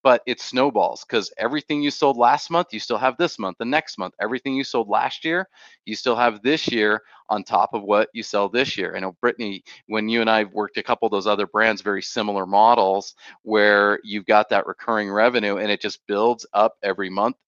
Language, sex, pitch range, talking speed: English, male, 105-135 Hz, 225 wpm